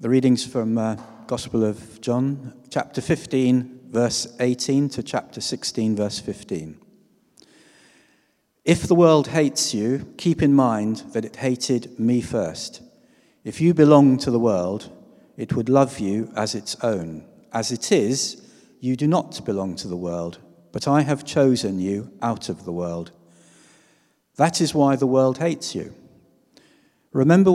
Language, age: English, 50-69